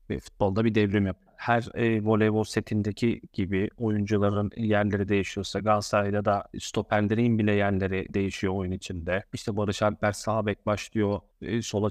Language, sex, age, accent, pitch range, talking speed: Turkish, male, 30-49, native, 100-115 Hz, 140 wpm